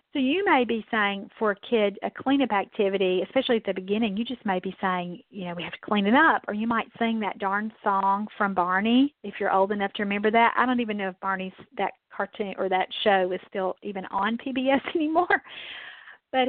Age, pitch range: 40-59, 200-260 Hz